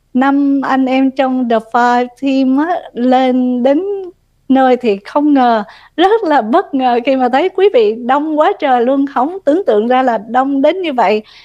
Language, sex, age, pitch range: Vietnamese, female, 20-39, 225-290 Hz